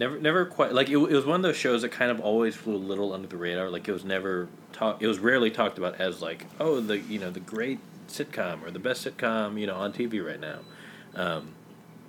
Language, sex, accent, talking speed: English, male, American, 255 wpm